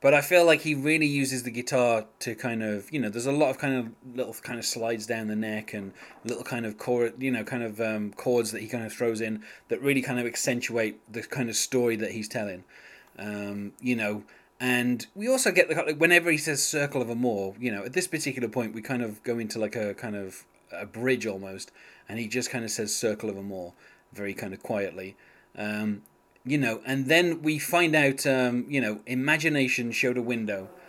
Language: English